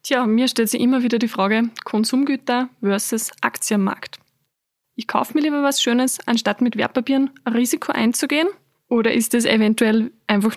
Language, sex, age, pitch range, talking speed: German, female, 20-39, 220-255 Hz, 160 wpm